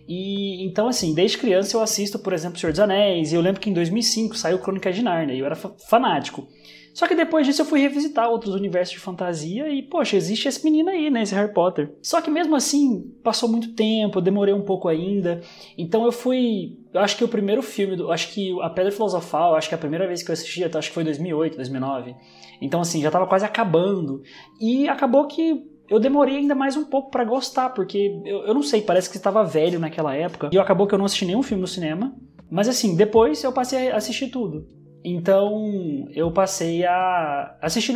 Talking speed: 225 wpm